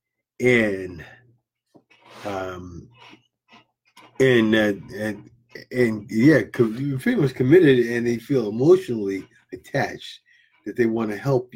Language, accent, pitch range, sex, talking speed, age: English, American, 105-130 Hz, male, 115 wpm, 50-69